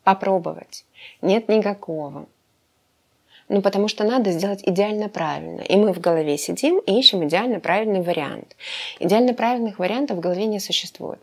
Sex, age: female, 30-49